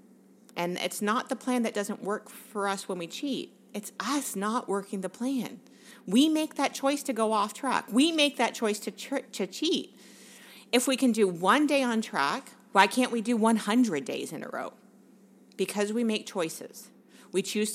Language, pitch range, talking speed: English, 180-235 Hz, 195 wpm